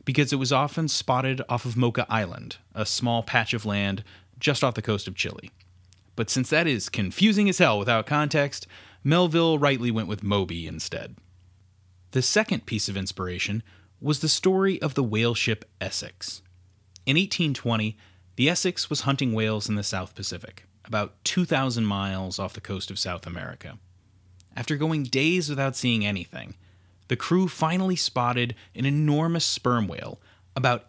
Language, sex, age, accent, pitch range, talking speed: English, male, 30-49, American, 95-135 Hz, 160 wpm